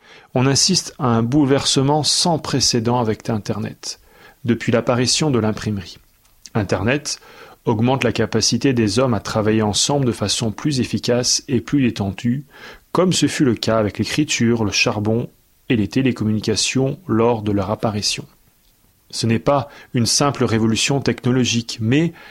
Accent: French